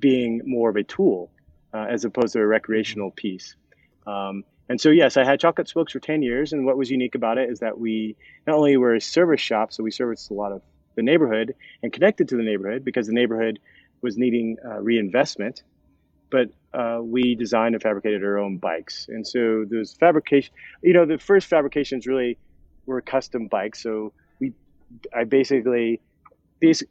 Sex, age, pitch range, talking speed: male, 30-49, 105-130 Hz, 190 wpm